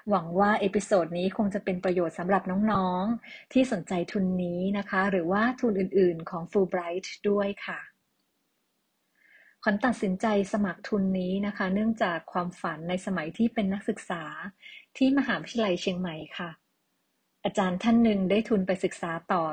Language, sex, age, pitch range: Thai, female, 30-49, 180-215 Hz